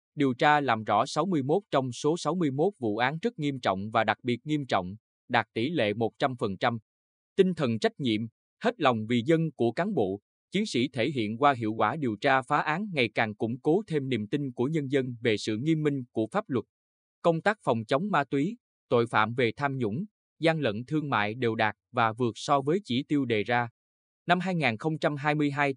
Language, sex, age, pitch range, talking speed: Vietnamese, male, 20-39, 110-150 Hz, 205 wpm